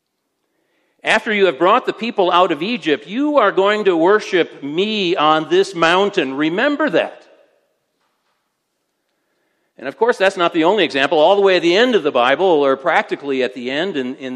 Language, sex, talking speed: English, male, 185 wpm